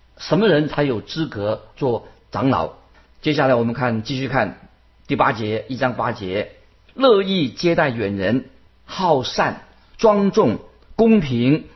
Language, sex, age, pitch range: Chinese, male, 50-69, 115-160 Hz